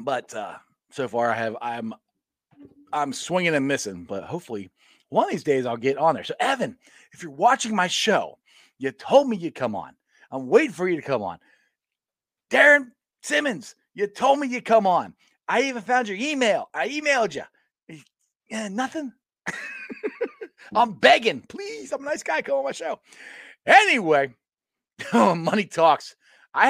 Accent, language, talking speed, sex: American, English, 170 wpm, male